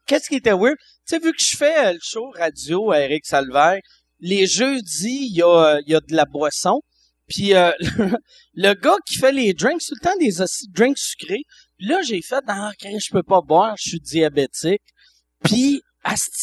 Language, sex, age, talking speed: French, male, 40-59, 190 wpm